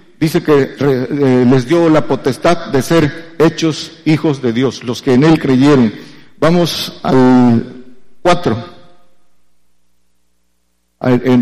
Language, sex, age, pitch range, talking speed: Spanish, male, 50-69, 130-170 Hz, 110 wpm